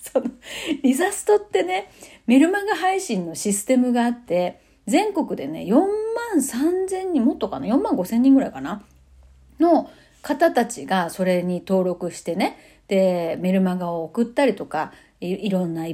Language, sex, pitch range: Japanese, female, 190-300 Hz